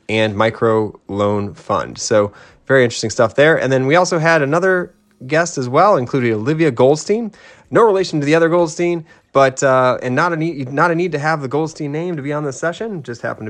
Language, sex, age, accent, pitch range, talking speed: English, male, 30-49, American, 120-165 Hz, 215 wpm